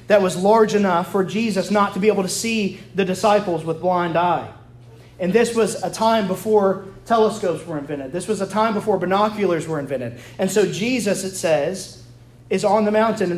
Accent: American